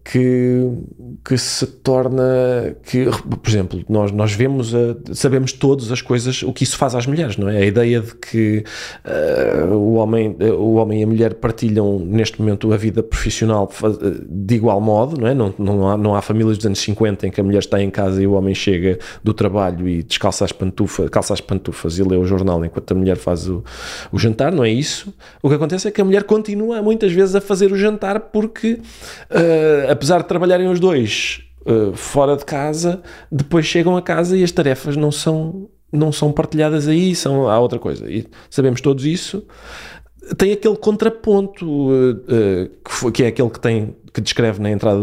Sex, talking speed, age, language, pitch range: male, 190 wpm, 20-39, Portuguese, 105-150 Hz